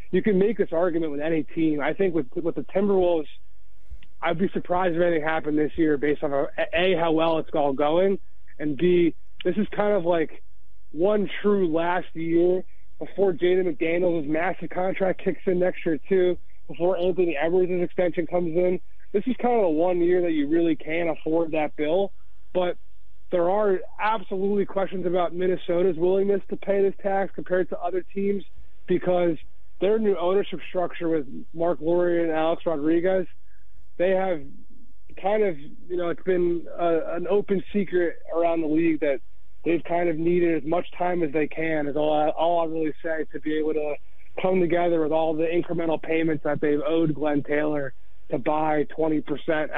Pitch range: 150-180 Hz